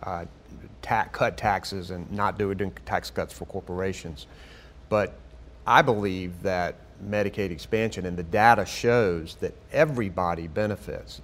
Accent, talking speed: American, 135 wpm